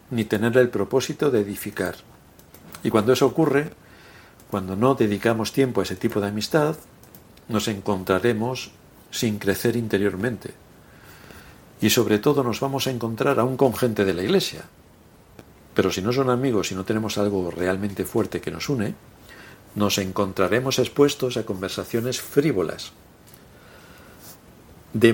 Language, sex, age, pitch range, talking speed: Spanish, male, 60-79, 100-130 Hz, 140 wpm